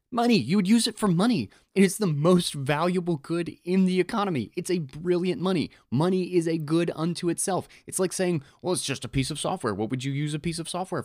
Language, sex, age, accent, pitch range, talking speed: English, male, 20-39, American, 130-175 Hz, 240 wpm